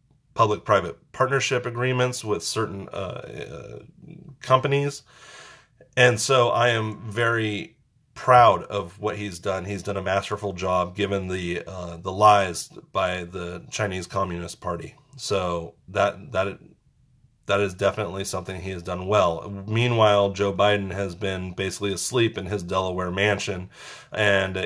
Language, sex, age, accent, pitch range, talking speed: English, male, 30-49, American, 95-110 Hz, 140 wpm